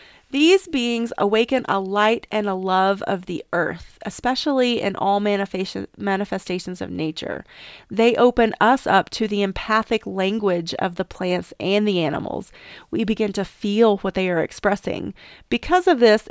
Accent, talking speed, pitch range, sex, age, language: American, 155 wpm, 195-240 Hz, female, 30-49, English